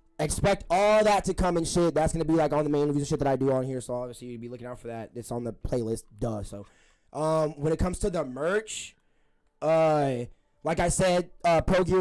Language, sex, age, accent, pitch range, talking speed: English, male, 20-39, American, 120-165 Hz, 255 wpm